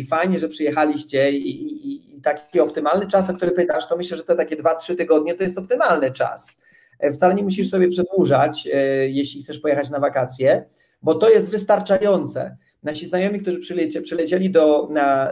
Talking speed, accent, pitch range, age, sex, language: 180 wpm, native, 155-190 Hz, 30-49, male, Polish